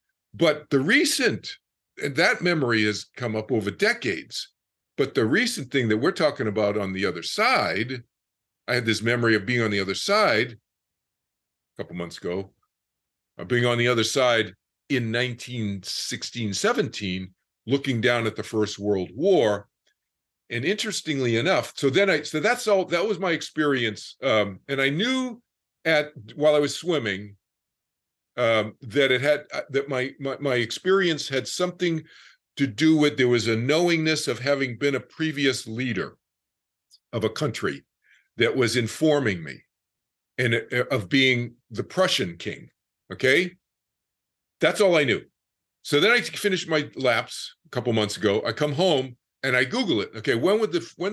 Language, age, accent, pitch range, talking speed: English, 50-69, American, 110-155 Hz, 165 wpm